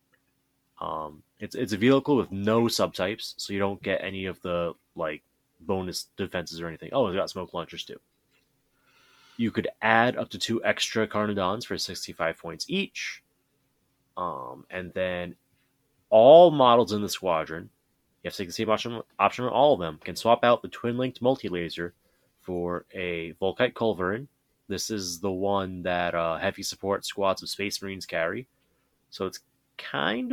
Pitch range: 90-120 Hz